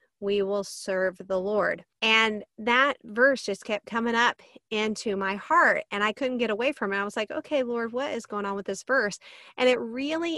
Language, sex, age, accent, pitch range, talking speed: English, female, 40-59, American, 205-270 Hz, 215 wpm